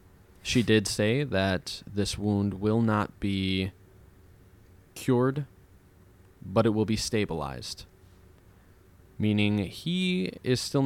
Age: 20-39